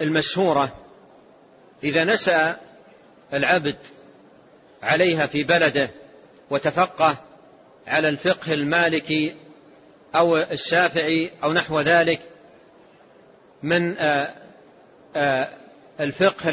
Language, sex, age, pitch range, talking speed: Arabic, male, 40-59, 160-220 Hz, 65 wpm